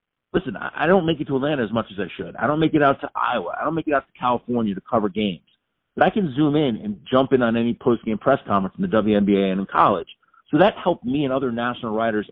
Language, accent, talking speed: English, American, 275 wpm